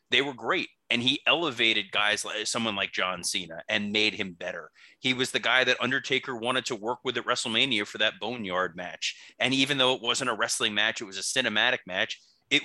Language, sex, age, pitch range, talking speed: English, male, 30-49, 105-130 Hz, 220 wpm